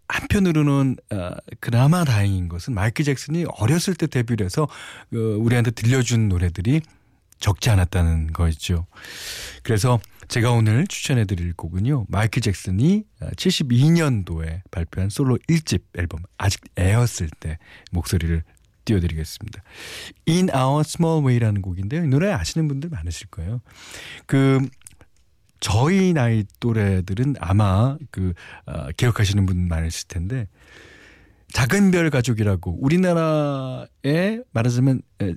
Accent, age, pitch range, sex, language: native, 40-59, 95-140 Hz, male, Korean